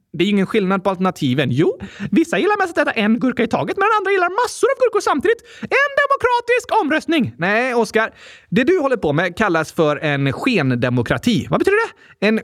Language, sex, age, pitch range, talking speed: Swedish, male, 30-49, 165-250 Hz, 200 wpm